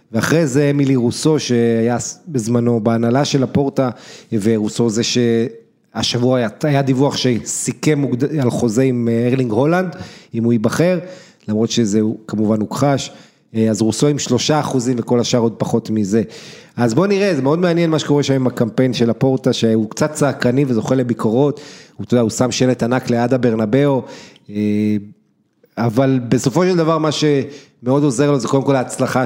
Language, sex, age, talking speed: Hebrew, male, 30-49, 160 wpm